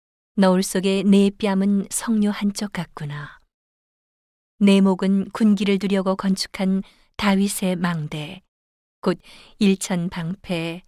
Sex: female